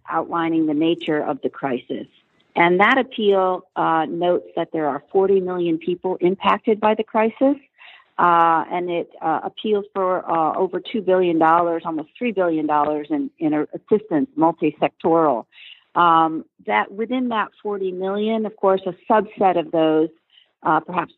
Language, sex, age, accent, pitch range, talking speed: English, female, 50-69, American, 165-200 Hz, 150 wpm